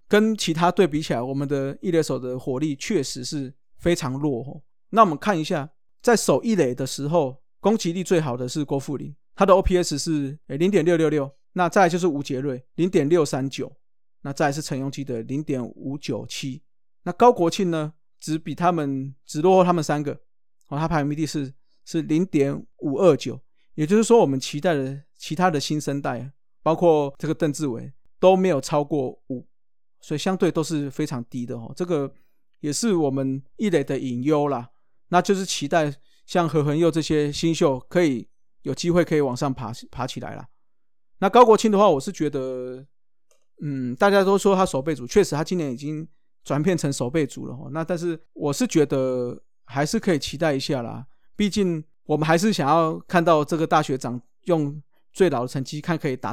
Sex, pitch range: male, 135-175 Hz